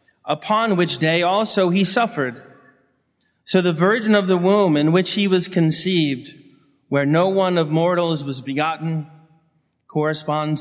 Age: 30-49